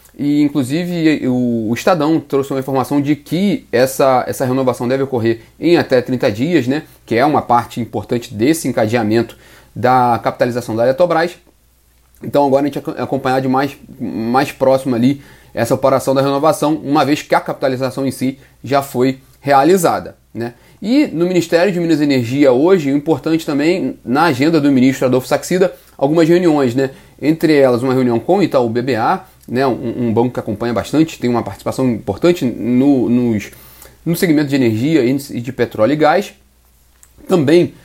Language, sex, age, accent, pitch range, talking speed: Portuguese, male, 30-49, Brazilian, 125-160 Hz, 170 wpm